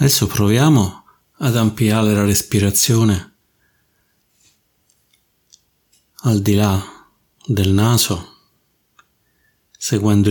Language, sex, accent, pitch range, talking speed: Italian, male, native, 95-105 Hz, 70 wpm